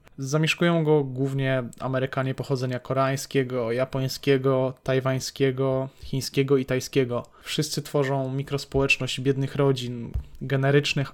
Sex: male